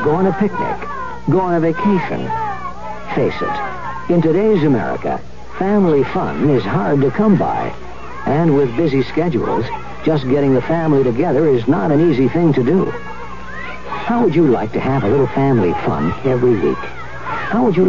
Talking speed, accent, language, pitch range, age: 170 wpm, American, English, 125-175 Hz, 60-79